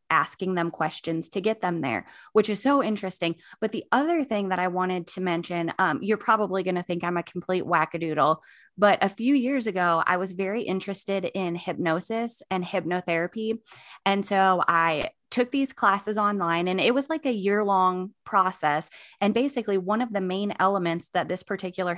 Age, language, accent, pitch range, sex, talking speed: 20-39, English, American, 175-210 Hz, female, 185 wpm